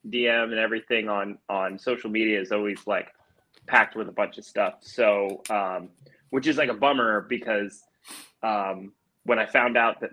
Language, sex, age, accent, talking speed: English, male, 20-39, American, 180 wpm